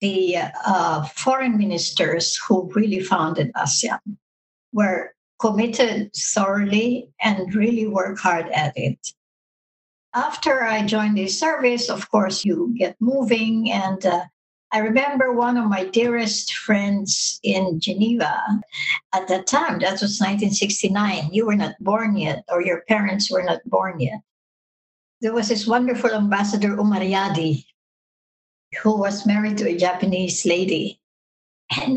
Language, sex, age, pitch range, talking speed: English, male, 60-79, 190-230 Hz, 130 wpm